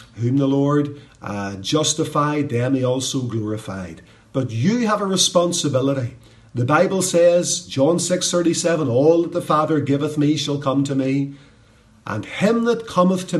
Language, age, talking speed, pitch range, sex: English, 50-69, 160 wpm, 120-165 Hz, male